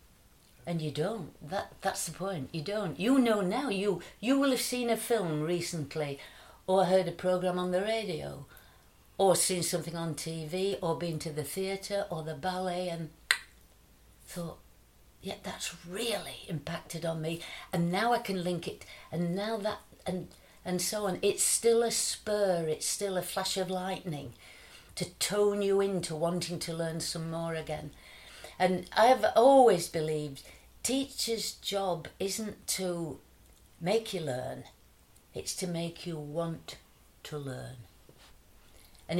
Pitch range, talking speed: 155-190 Hz, 155 wpm